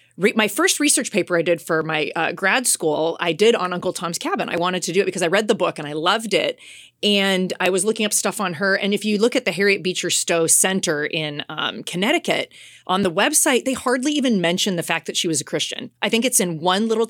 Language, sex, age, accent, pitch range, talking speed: English, female, 30-49, American, 180-250 Hz, 255 wpm